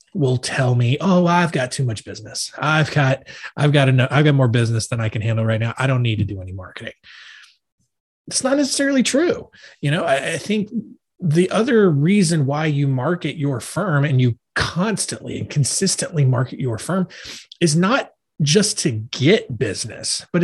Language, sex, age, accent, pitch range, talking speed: English, male, 30-49, American, 120-160 Hz, 185 wpm